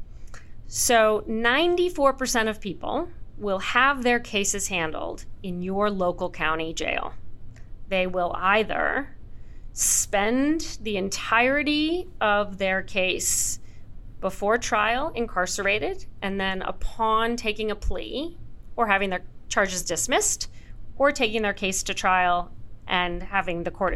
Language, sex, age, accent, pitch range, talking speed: English, female, 40-59, American, 185-230 Hz, 120 wpm